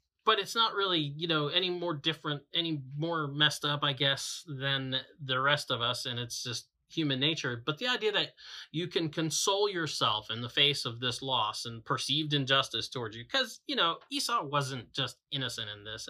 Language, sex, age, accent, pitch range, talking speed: English, male, 30-49, American, 120-155 Hz, 200 wpm